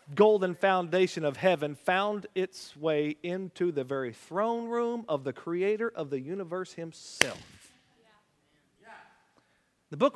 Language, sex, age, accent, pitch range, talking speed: English, male, 40-59, American, 200-330 Hz, 125 wpm